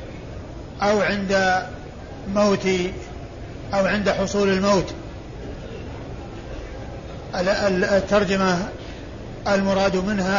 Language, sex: Arabic, male